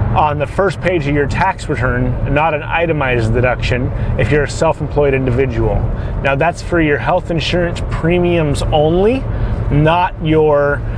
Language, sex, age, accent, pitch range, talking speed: English, male, 30-49, American, 125-165 Hz, 150 wpm